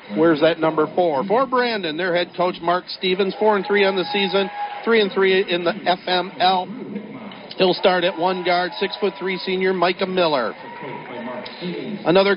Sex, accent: male, American